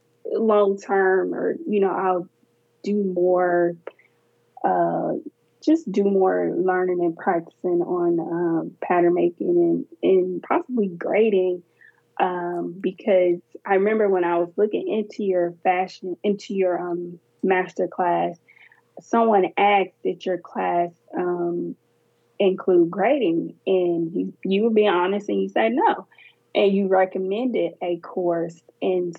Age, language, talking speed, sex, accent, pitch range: 20-39, English, 130 wpm, female, American, 175-205 Hz